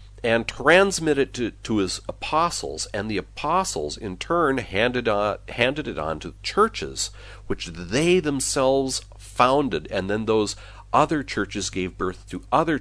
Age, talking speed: 40-59, 145 wpm